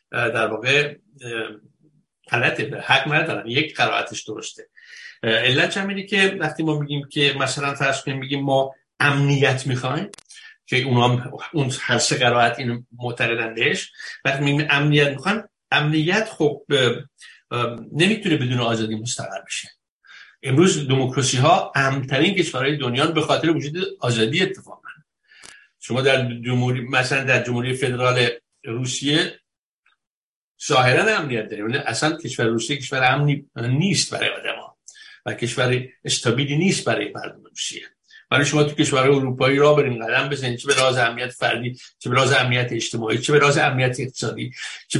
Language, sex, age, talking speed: Persian, male, 60-79, 145 wpm